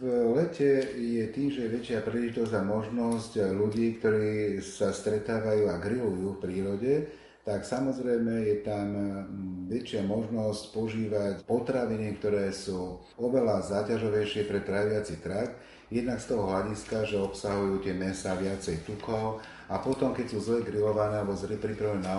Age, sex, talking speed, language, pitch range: 40-59, male, 140 wpm, Slovak, 100-115 Hz